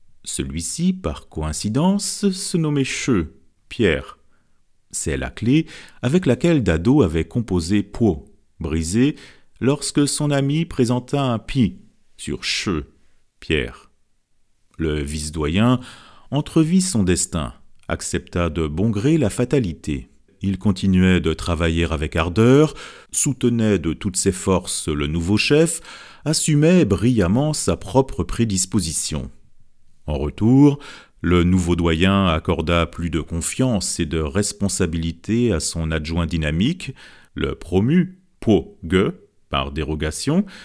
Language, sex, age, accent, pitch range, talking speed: French, male, 40-59, French, 85-130 Hz, 115 wpm